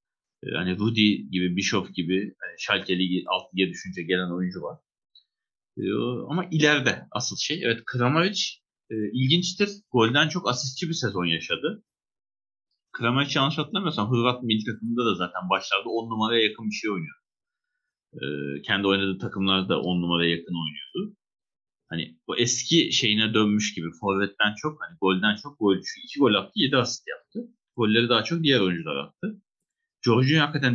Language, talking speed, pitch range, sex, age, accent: Turkish, 150 wpm, 95-155 Hz, male, 30-49, native